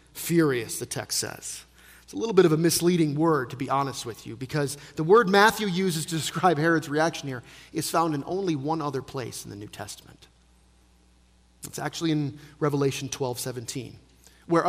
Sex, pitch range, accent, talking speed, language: male, 130-190 Hz, American, 185 wpm, English